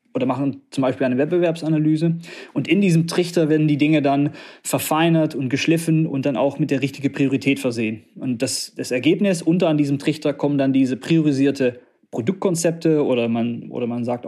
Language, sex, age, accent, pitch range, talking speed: German, male, 20-39, German, 140-160 Hz, 180 wpm